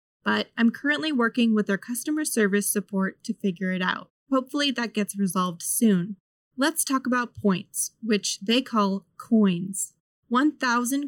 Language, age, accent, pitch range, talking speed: English, 20-39, American, 195-260 Hz, 145 wpm